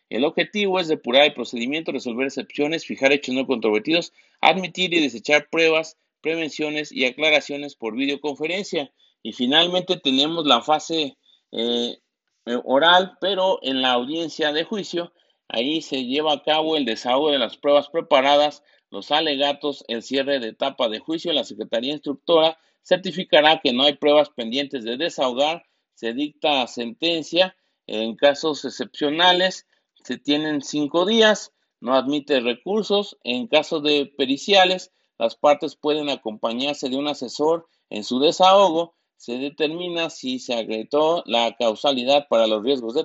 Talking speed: 140 wpm